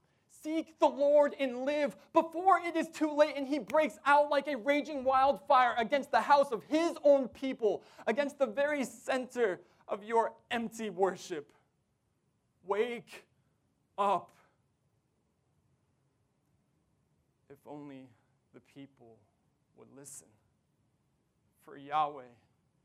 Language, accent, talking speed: English, American, 115 wpm